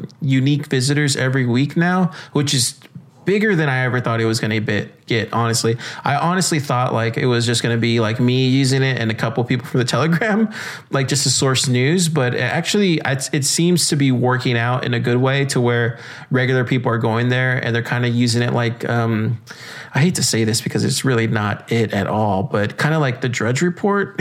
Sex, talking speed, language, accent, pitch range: male, 230 wpm, English, American, 115-145 Hz